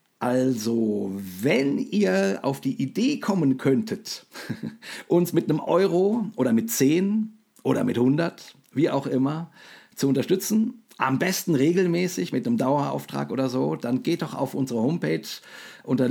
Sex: male